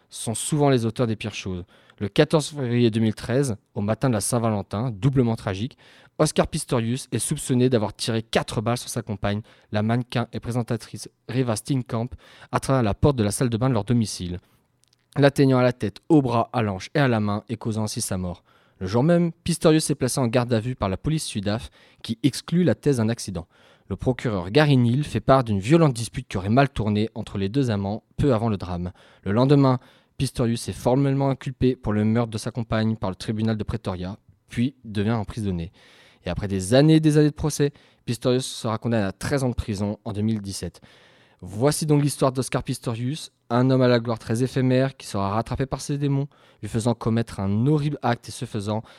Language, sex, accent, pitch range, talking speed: French, male, French, 105-135 Hz, 210 wpm